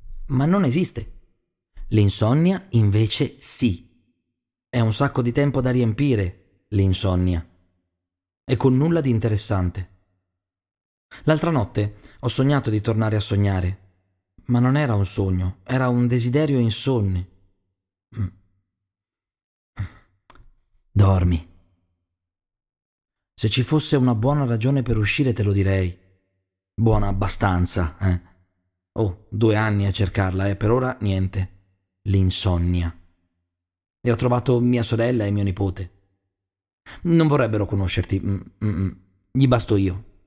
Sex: male